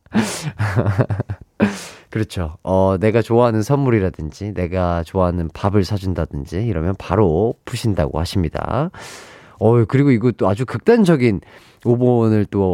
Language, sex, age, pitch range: Korean, male, 30-49, 95-160 Hz